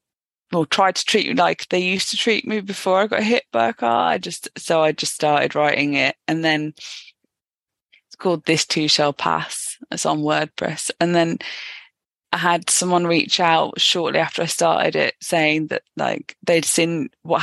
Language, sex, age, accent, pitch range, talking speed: English, female, 20-39, British, 145-175 Hz, 190 wpm